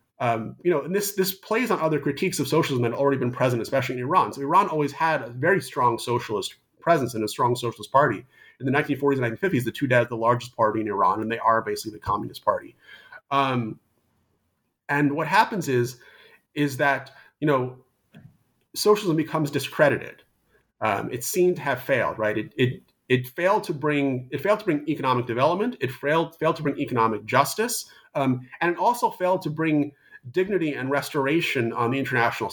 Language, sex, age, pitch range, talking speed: English, male, 30-49, 120-150 Hz, 195 wpm